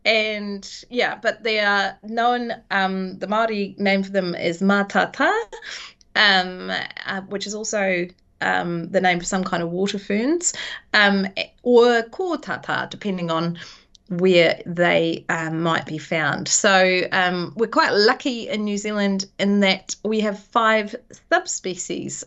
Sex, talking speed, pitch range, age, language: female, 145 wpm, 175-215 Hz, 30-49, English